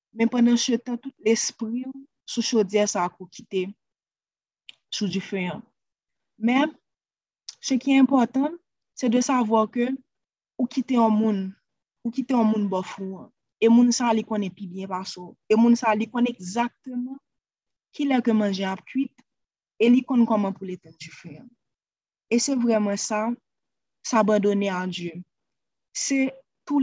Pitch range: 195-245 Hz